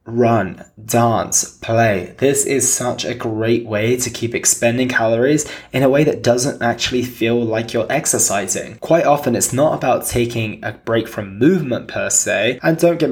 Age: 20-39